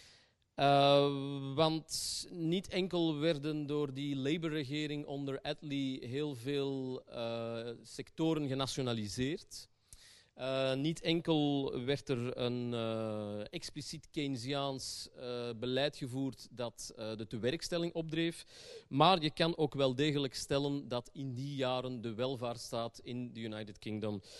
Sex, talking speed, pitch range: male, 120 wpm, 125-155 Hz